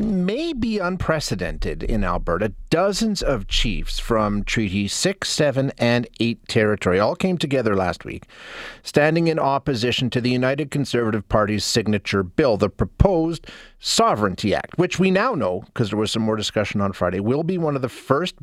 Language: English